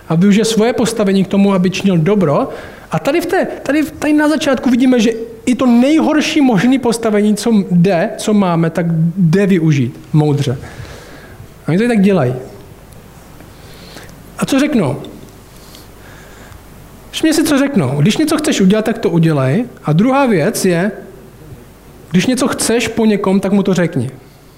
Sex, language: male, Czech